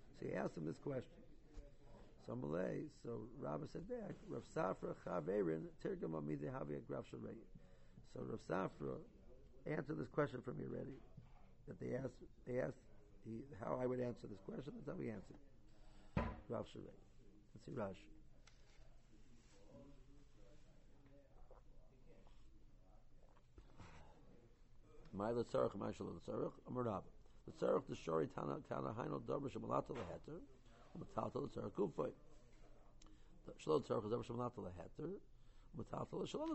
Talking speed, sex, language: 80 wpm, male, English